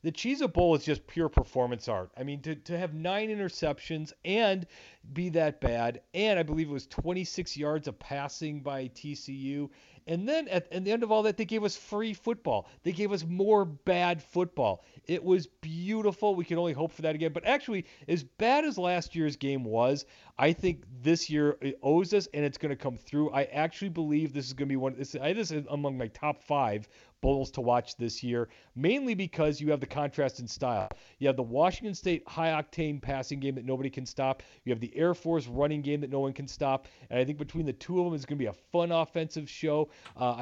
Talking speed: 225 wpm